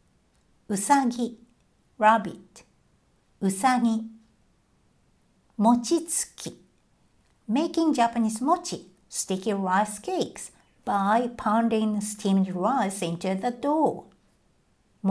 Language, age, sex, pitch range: Japanese, 60-79, female, 200-275 Hz